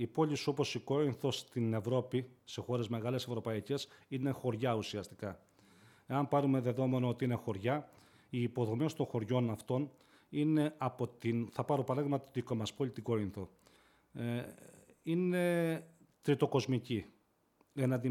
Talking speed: 135 wpm